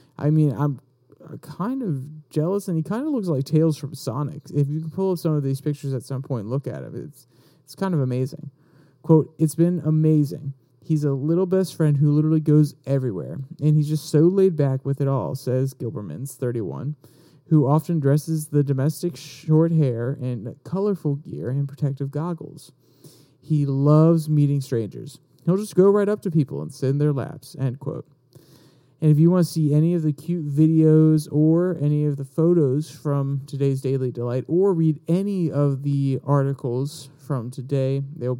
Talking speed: 190 wpm